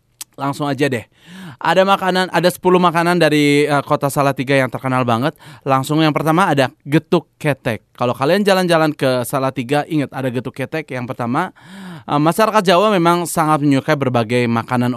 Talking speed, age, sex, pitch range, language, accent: 150 wpm, 20-39, male, 130-160 Hz, Indonesian, native